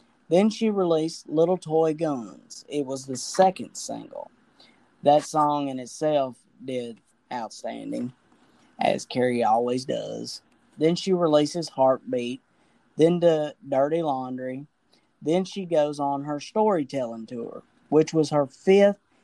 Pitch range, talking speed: 140-180 Hz, 120 wpm